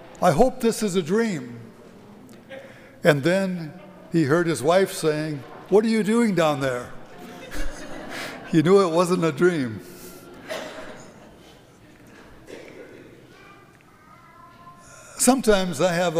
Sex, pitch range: male, 160-205 Hz